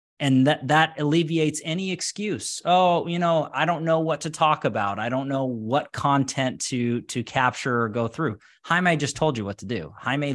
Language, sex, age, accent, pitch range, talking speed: English, male, 20-39, American, 115-155 Hz, 205 wpm